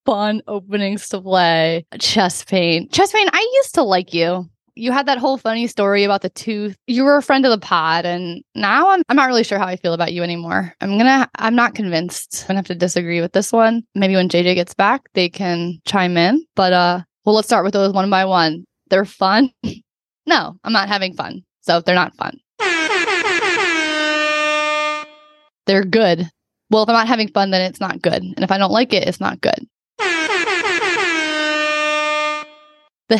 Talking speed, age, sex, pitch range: 195 wpm, 10-29, female, 185-290 Hz